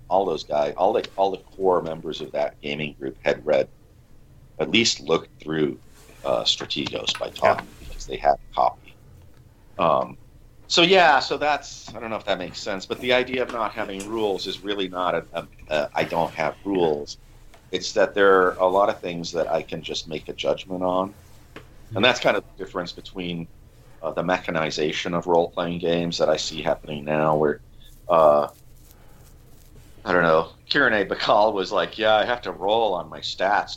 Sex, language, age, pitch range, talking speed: male, English, 40-59, 80-105 Hz, 190 wpm